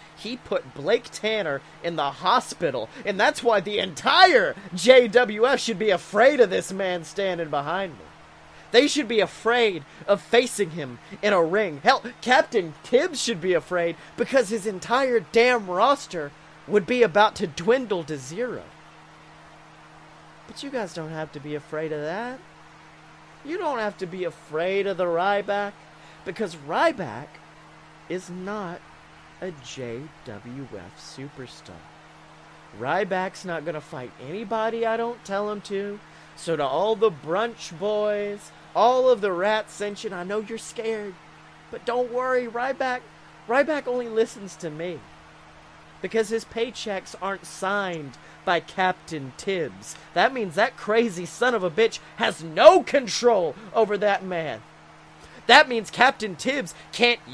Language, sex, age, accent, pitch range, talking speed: English, male, 30-49, American, 165-235 Hz, 145 wpm